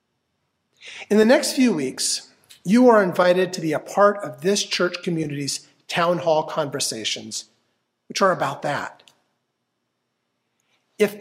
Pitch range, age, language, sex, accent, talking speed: 155-205 Hz, 50-69, English, male, American, 130 wpm